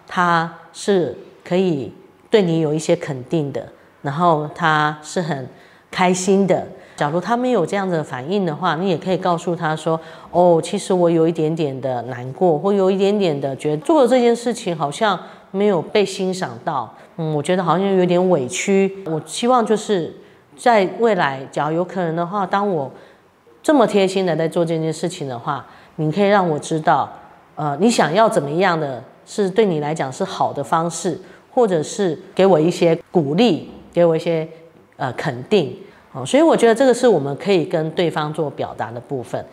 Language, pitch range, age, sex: Chinese, 155-200 Hz, 30-49, female